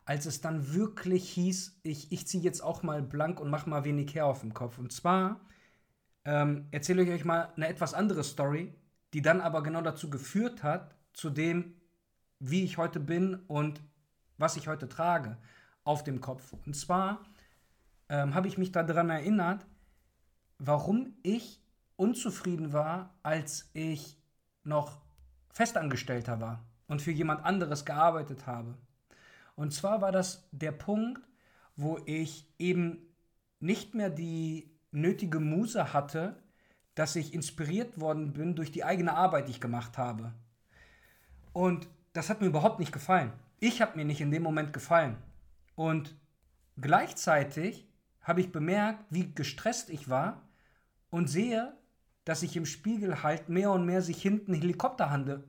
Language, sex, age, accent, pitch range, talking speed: German, male, 40-59, German, 145-180 Hz, 150 wpm